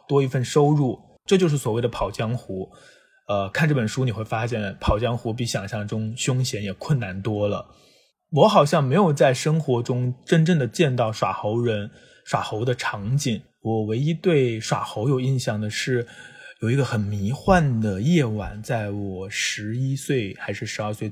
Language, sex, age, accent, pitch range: Chinese, male, 20-39, native, 110-150 Hz